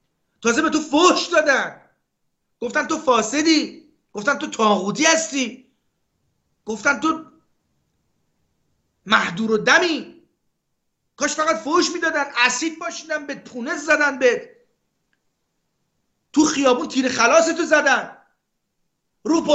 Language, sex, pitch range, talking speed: Persian, male, 205-290 Hz, 100 wpm